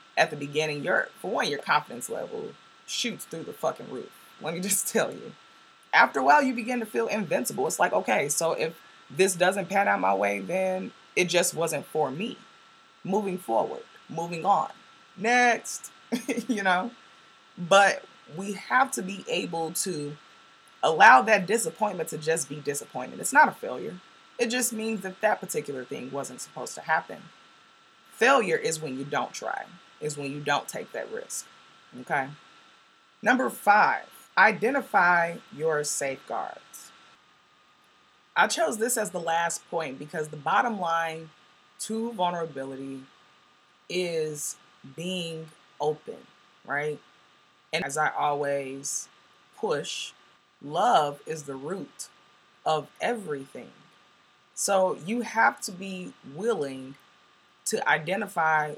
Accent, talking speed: American, 135 wpm